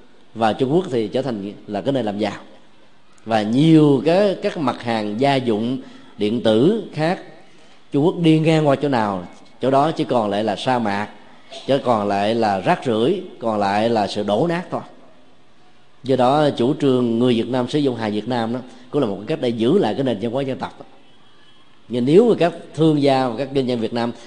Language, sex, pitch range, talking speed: Vietnamese, male, 115-145 Hz, 220 wpm